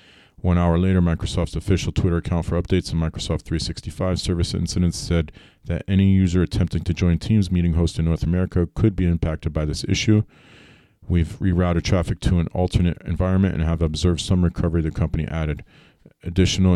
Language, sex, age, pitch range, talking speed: English, male, 40-59, 80-95 Hz, 175 wpm